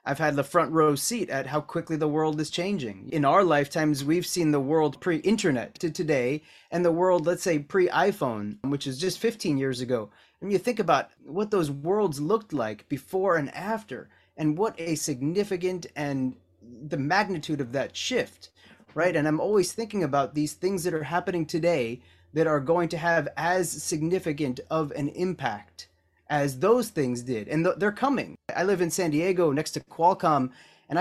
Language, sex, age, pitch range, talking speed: English, male, 30-49, 140-180 Hz, 185 wpm